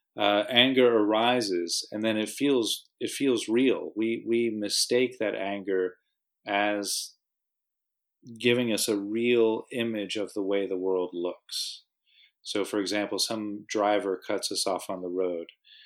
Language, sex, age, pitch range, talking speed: English, male, 40-59, 100-120 Hz, 145 wpm